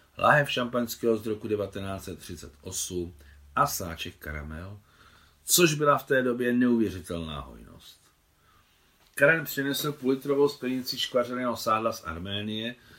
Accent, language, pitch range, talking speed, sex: native, Czech, 85-115 Hz, 105 wpm, male